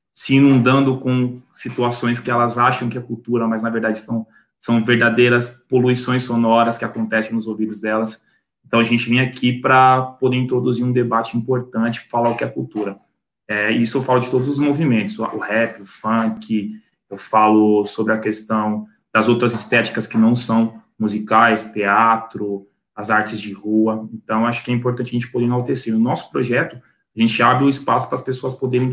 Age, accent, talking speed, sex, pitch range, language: 20-39, Brazilian, 185 wpm, male, 110-125 Hz, Portuguese